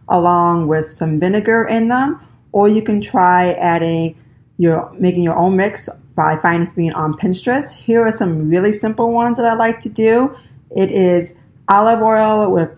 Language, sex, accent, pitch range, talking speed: English, female, American, 170-210 Hz, 175 wpm